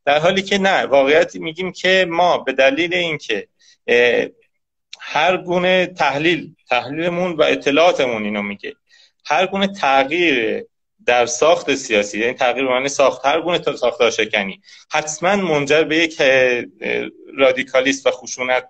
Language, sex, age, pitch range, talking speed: Persian, male, 30-49, 135-180 Hz, 135 wpm